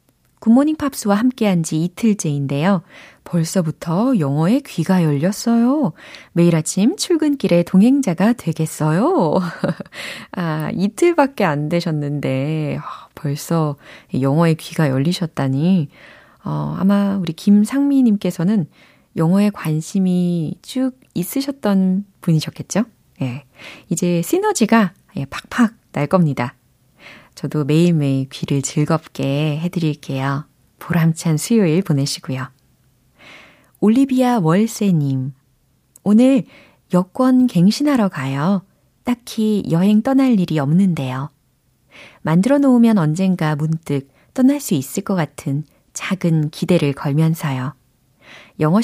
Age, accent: 20-39, native